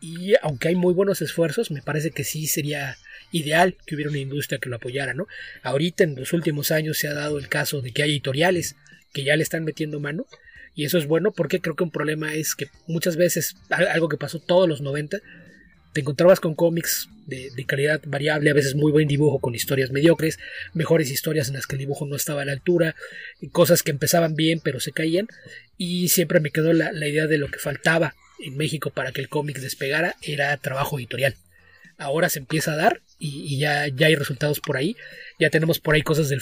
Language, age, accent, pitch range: Spanish, 30-49, Mexican, 140-170 Hz